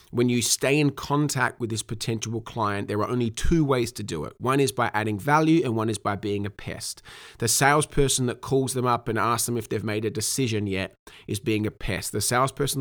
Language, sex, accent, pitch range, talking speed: English, male, Australian, 115-145 Hz, 235 wpm